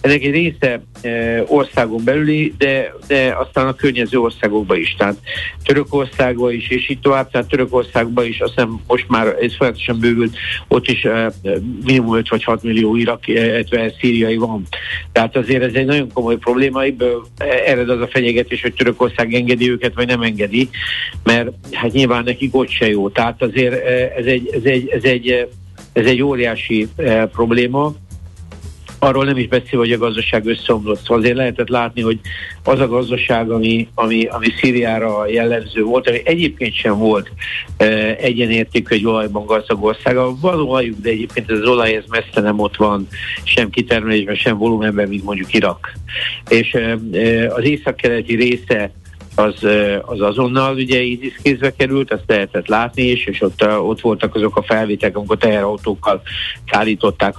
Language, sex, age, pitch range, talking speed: Hungarian, male, 60-79, 105-125 Hz, 165 wpm